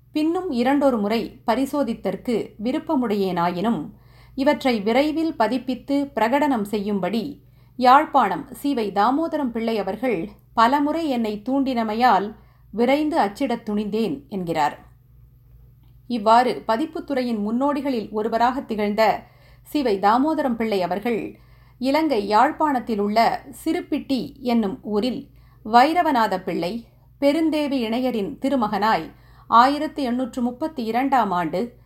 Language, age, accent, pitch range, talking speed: Tamil, 50-69, native, 205-270 Hz, 85 wpm